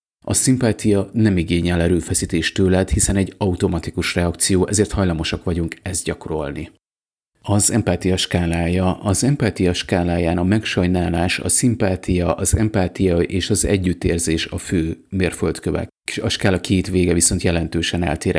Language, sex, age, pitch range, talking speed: Hungarian, male, 30-49, 85-100 Hz, 130 wpm